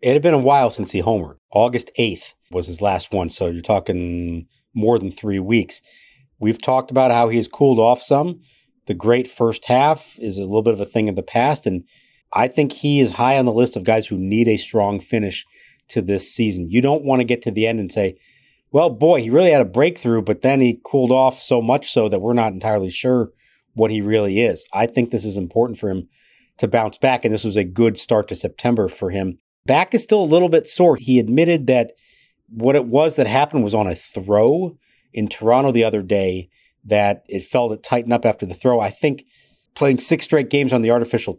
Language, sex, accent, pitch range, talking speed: English, male, American, 105-130 Hz, 230 wpm